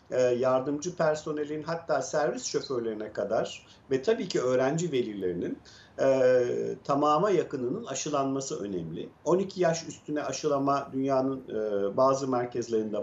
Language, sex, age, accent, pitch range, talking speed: Turkish, male, 50-69, native, 125-155 Hz, 110 wpm